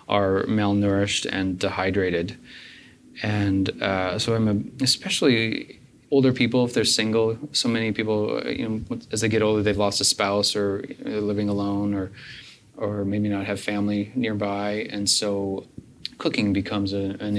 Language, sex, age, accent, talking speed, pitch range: English, male, 30-49, American, 160 wpm, 100-115 Hz